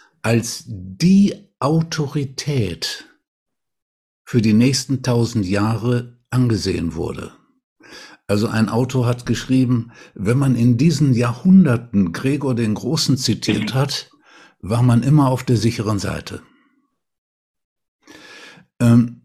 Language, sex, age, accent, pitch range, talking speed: German, male, 60-79, German, 110-135 Hz, 105 wpm